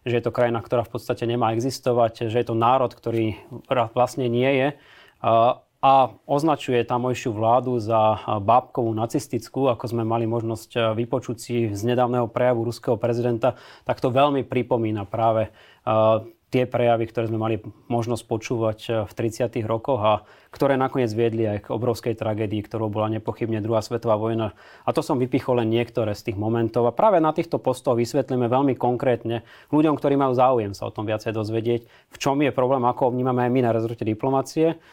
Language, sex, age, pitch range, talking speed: Slovak, male, 20-39, 110-125 Hz, 170 wpm